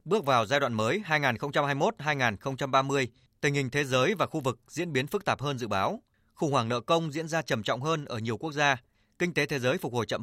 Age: 20-39